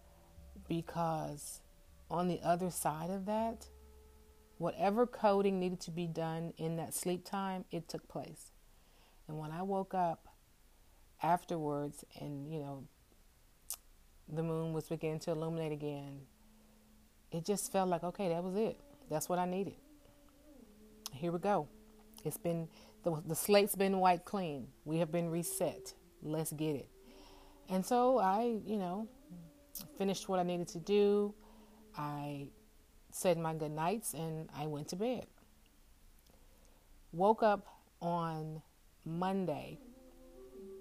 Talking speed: 135 wpm